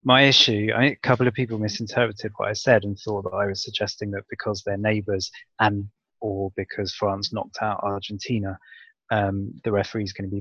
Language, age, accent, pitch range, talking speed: English, 20-39, British, 100-110 Hz, 195 wpm